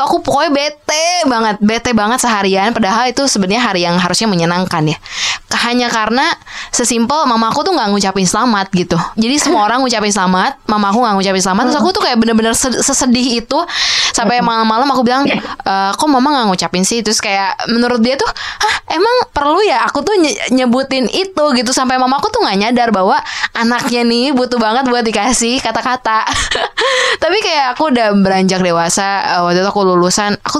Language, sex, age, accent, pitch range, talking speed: Indonesian, female, 20-39, native, 190-250 Hz, 175 wpm